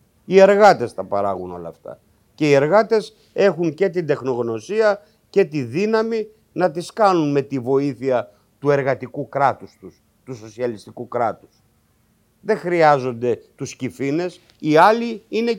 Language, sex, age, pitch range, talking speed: Greek, male, 50-69, 120-175 Hz, 140 wpm